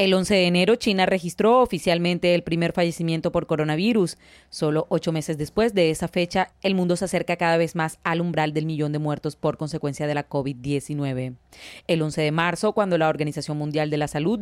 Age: 30-49